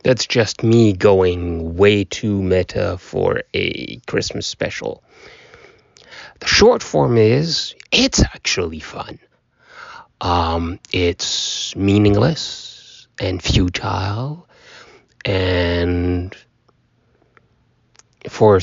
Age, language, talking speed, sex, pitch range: 30-49, English, 80 wpm, male, 95-130 Hz